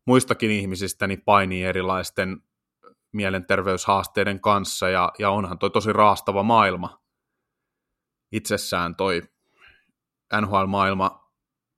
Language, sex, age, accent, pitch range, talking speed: Finnish, male, 20-39, native, 95-110 Hz, 85 wpm